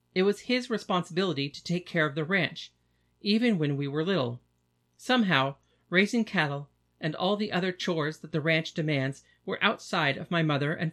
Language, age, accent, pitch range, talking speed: English, 40-59, American, 125-185 Hz, 180 wpm